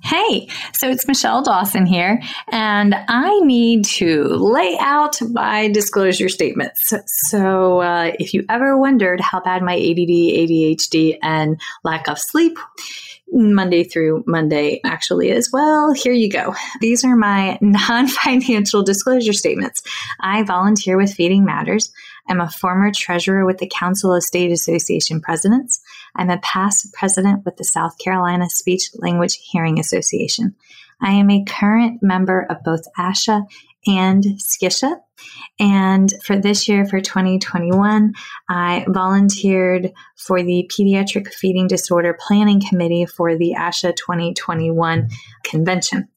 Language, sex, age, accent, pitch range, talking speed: English, female, 20-39, American, 175-215 Hz, 135 wpm